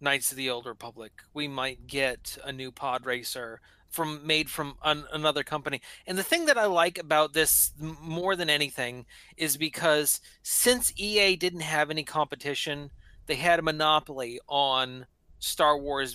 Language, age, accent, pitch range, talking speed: English, 30-49, American, 140-200 Hz, 165 wpm